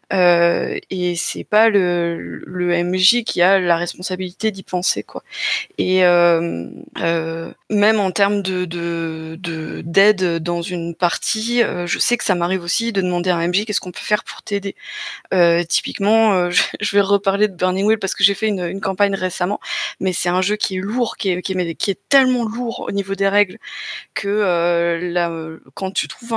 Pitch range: 180-220 Hz